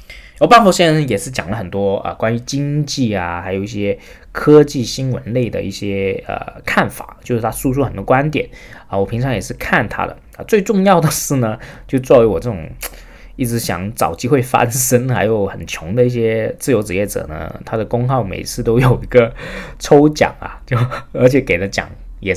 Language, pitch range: Chinese, 95-130 Hz